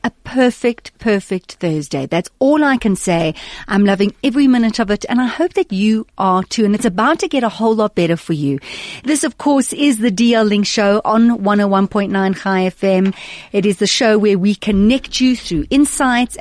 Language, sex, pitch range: English, female, 185-250 Hz